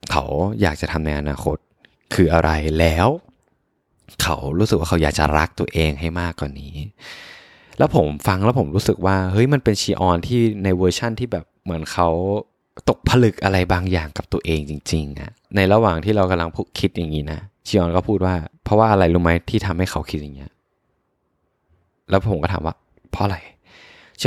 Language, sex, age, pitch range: Thai, male, 20-39, 85-110 Hz